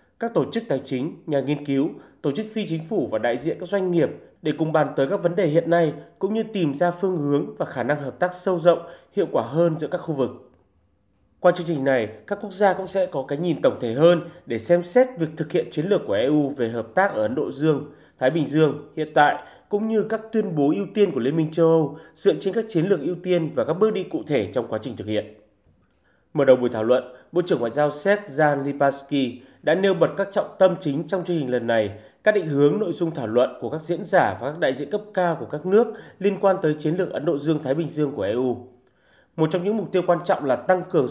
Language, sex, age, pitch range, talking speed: Vietnamese, male, 20-39, 135-185 Hz, 265 wpm